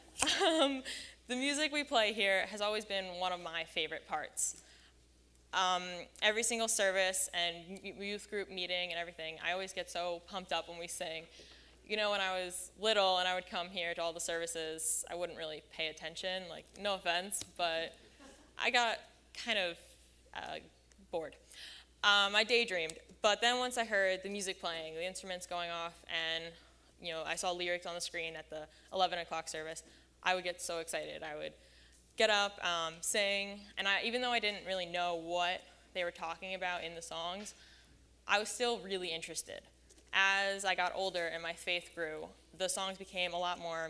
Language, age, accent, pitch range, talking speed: English, 10-29, American, 165-195 Hz, 185 wpm